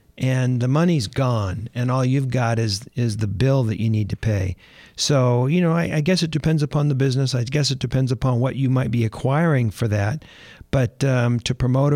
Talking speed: 220 wpm